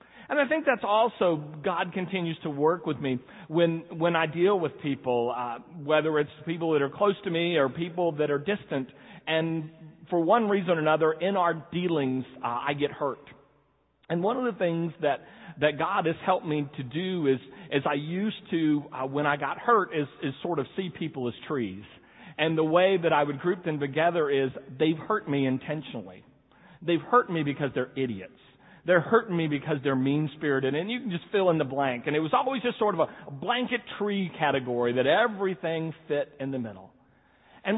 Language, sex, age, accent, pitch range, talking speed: English, male, 40-59, American, 140-190 Hz, 200 wpm